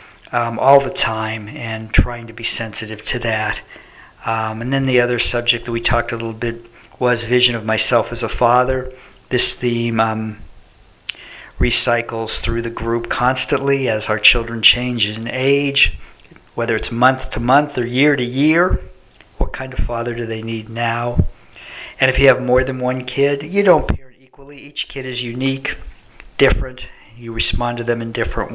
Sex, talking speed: male, 175 wpm